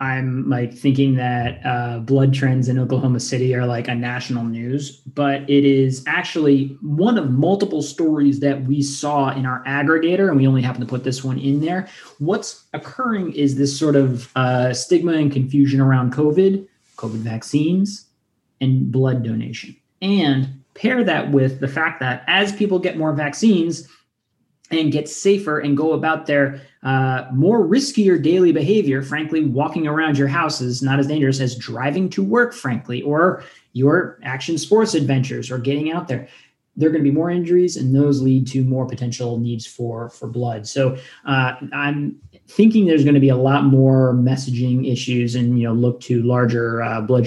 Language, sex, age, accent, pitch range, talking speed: English, male, 20-39, American, 125-155 Hz, 180 wpm